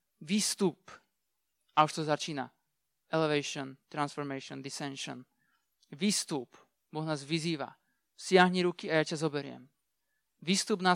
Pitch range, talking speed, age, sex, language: 145-170 Hz, 110 wpm, 20-39, male, Slovak